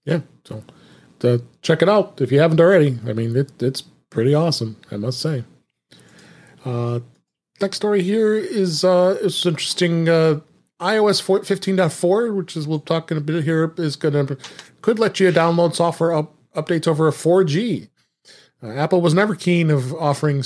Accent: American